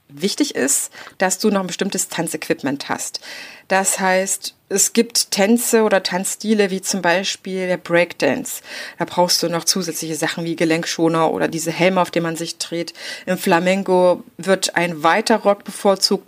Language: German